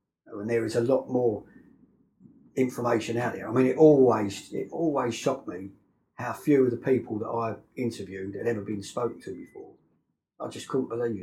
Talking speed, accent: 185 wpm, British